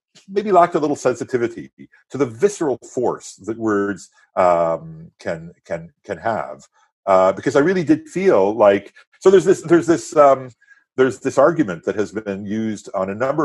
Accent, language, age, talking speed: American, English, 50-69, 175 wpm